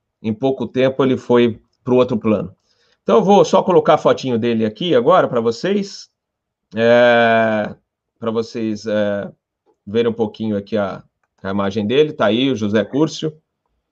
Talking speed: 165 wpm